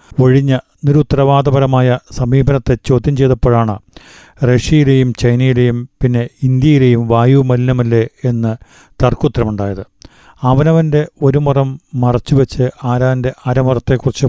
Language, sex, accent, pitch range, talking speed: Malayalam, male, native, 120-140 Hz, 75 wpm